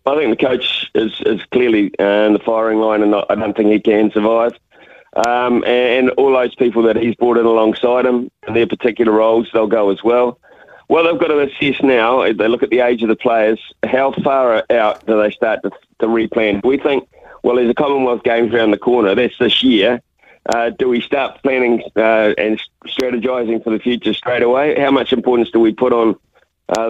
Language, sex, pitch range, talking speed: English, male, 110-125 Hz, 220 wpm